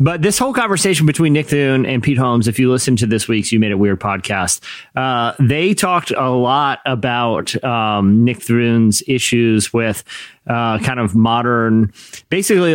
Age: 30-49